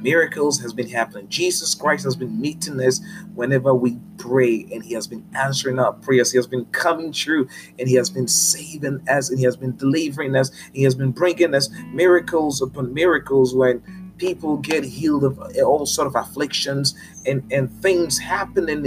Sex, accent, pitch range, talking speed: male, American, 125-165 Hz, 185 wpm